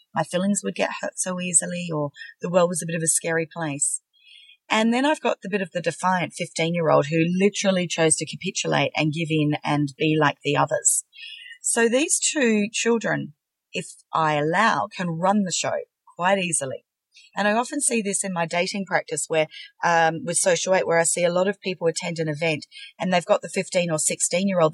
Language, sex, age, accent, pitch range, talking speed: English, female, 40-59, Australian, 155-205 Hz, 205 wpm